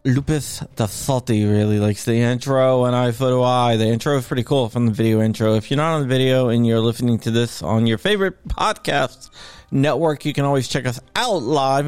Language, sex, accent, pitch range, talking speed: English, male, American, 115-145 Hz, 220 wpm